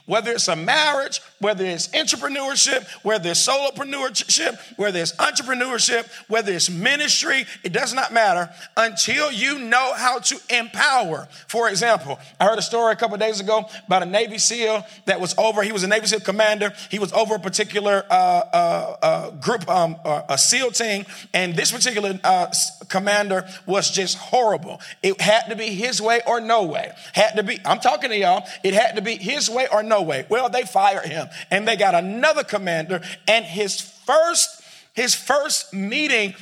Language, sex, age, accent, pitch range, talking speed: English, male, 50-69, American, 200-265 Hz, 185 wpm